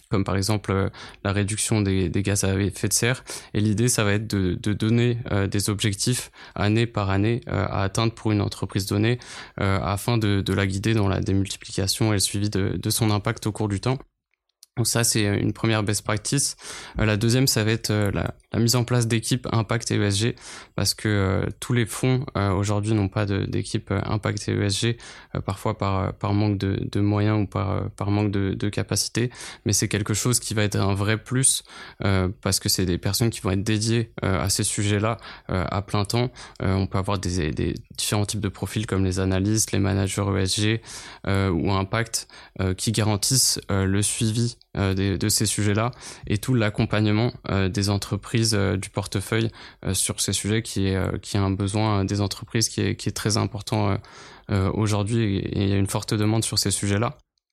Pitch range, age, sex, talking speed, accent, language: 100-115 Hz, 20-39, male, 215 wpm, French, French